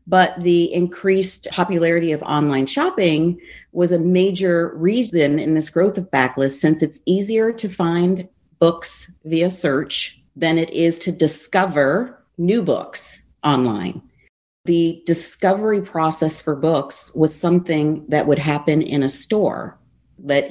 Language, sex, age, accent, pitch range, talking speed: English, female, 40-59, American, 145-175 Hz, 135 wpm